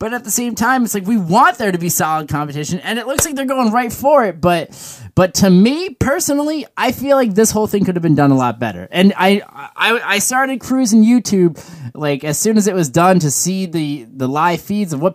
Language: English